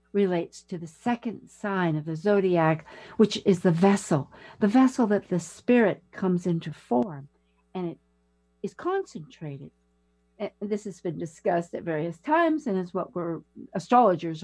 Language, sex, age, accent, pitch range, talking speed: English, female, 60-79, American, 130-195 Hz, 155 wpm